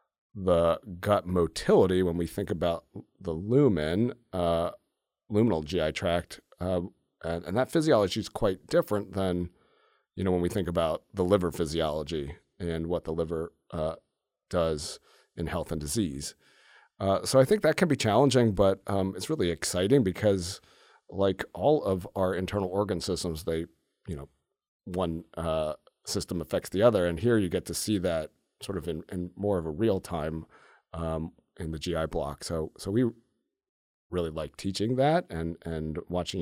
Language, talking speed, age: English, 170 wpm, 40-59